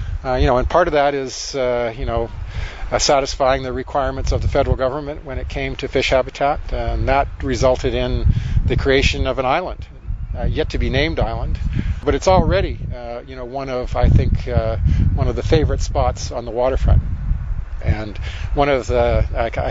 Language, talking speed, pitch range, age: English, 185 wpm, 95-130 Hz, 40-59